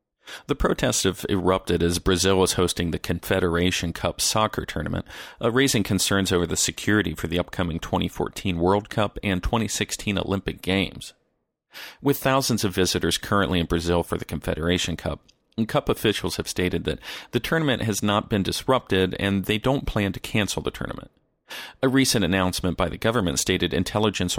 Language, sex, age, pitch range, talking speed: English, male, 40-59, 90-105 Hz, 160 wpm